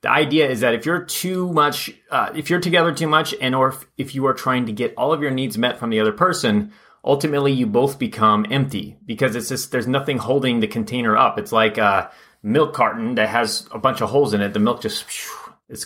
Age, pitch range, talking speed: 30-49, 110-150 Hz, 240 wpm